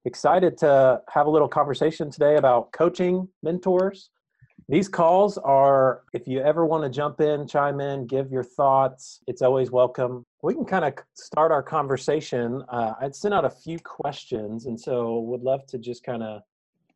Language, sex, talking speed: English, male, 175 wpm